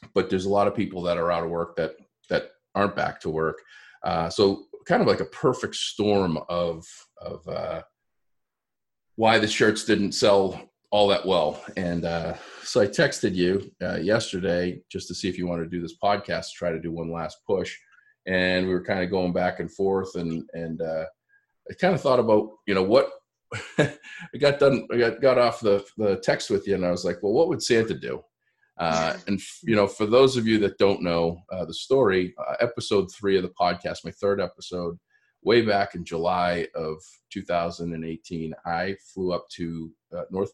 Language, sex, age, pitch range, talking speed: English, male, 40-59, 85-100 Hz, 200 wpm